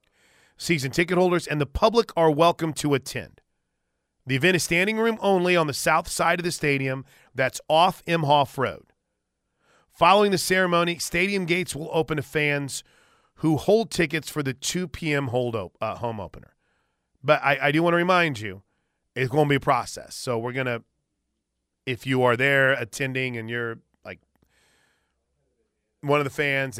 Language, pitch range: English, 125-170 Hz